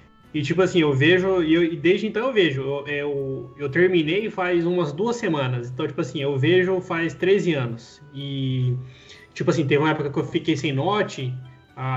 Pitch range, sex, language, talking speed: 135-180 Hz, male, Portuguese, 185 wpm